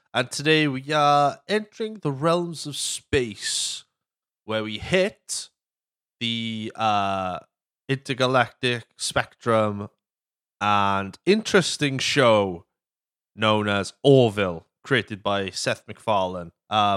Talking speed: 95 wpm